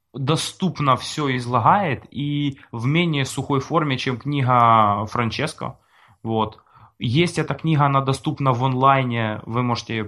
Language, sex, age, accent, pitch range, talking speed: Russian, male, 20-39, native, 125-155 Hz, 130 wpm